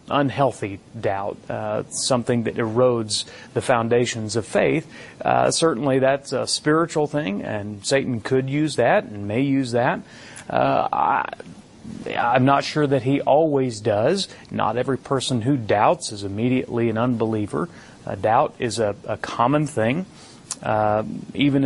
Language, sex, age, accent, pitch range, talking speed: English, male, 30-49, American, 115-140 Hz, 140 wpm